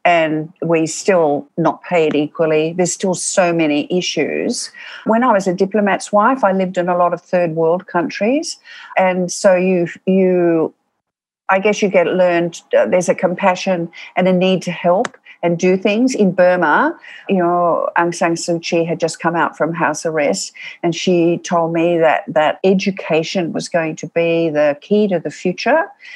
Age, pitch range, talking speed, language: 60-79, 175-225 Hz, 175 wpm, English